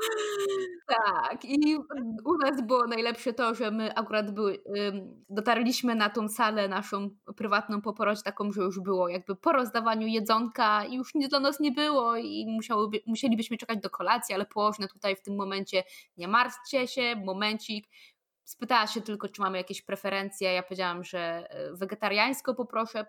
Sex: female